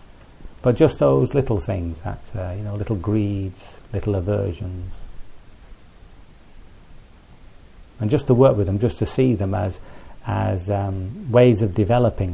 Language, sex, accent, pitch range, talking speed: English, male, British, 85-110 Hz, 140 wpm